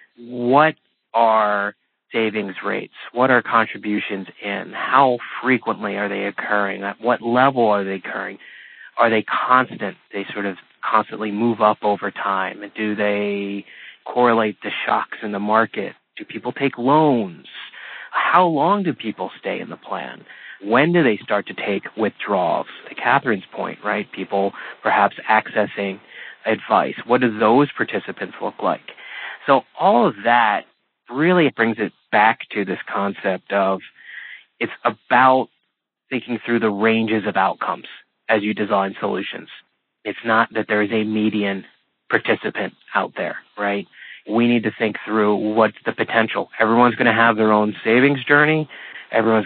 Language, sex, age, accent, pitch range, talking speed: English, male, 30-49, American, 100-120 Hz, 150 wpm